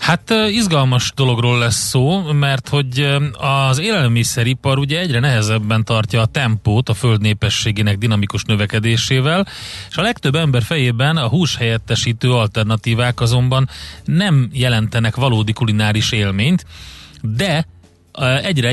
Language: Hungarian